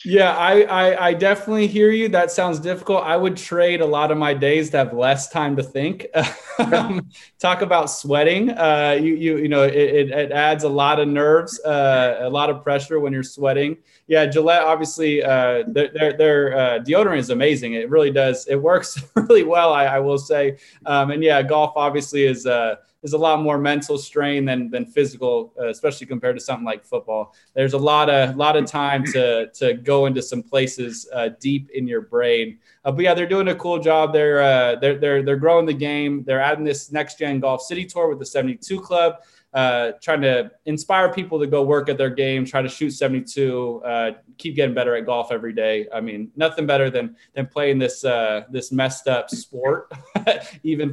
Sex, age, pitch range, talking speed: male, 20-39, 135-165 Hz, 205 wpm